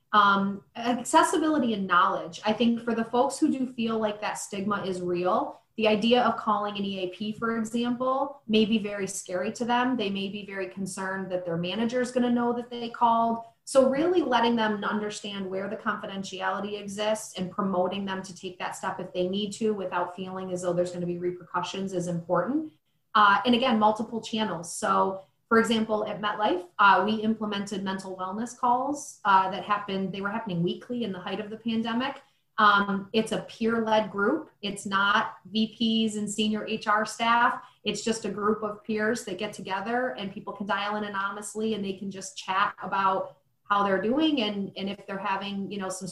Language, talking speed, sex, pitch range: English, 195 wpm, female, 190-225 Hz